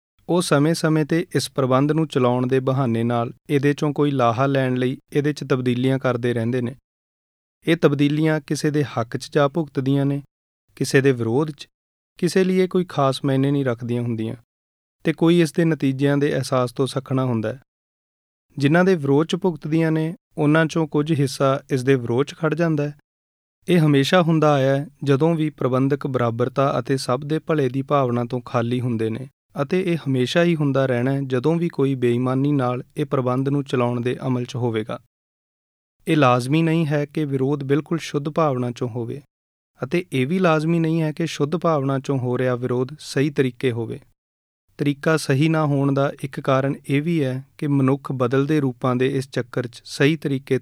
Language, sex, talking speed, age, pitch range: Punjabi, male, 160 wpm, 30-49, 125-155 Hz